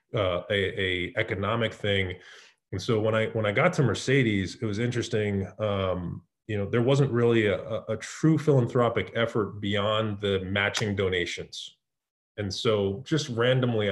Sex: male